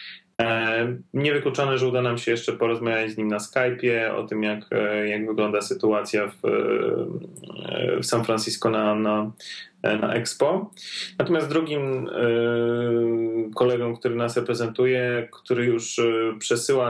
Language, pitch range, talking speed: Polish, 110-125 Hz, 130 wpm